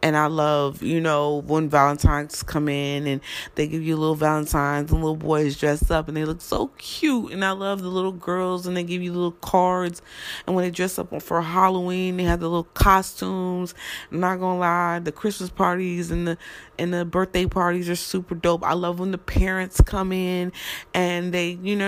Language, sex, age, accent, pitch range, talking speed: English, female, 20-39, American, 155-185 Hz, 205 wpm